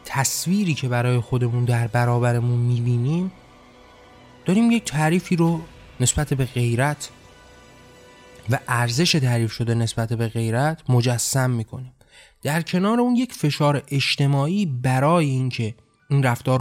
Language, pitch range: Persian, 115-145 Hz